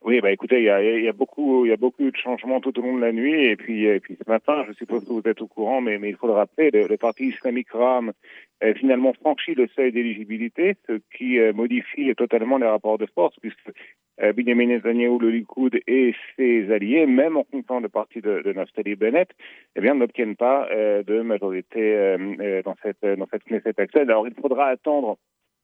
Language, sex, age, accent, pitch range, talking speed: Italian, male, 40-59, French, 110-135 Hz, 220 wpm